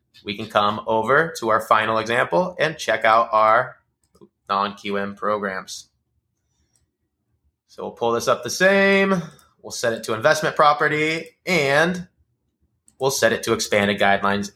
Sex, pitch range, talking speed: male, 105-135 Hz, 140 wpm